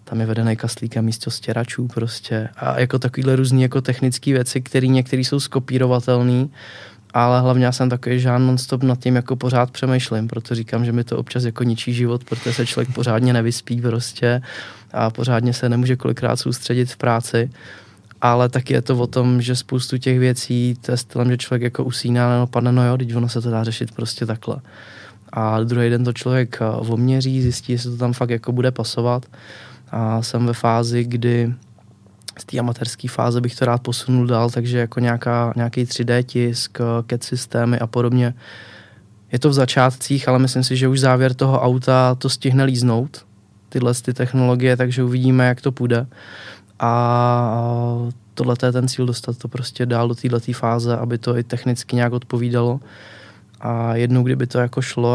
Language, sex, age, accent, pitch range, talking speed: Czech, male, 20-39, native, 115-125 Hz, 180 wpm